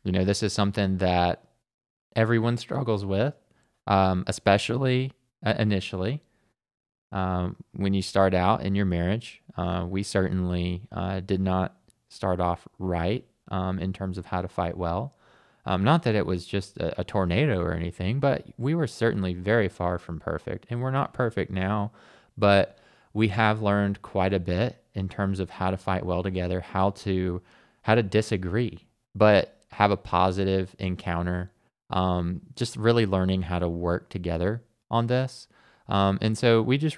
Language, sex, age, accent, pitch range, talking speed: English, male, 20-39, American, 90-110 Hz, 165 wpm